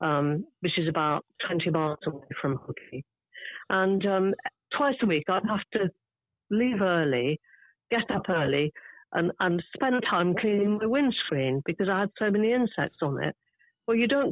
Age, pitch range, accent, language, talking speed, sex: 50-69, 165-220 Hz, British, English, 170 wpm, female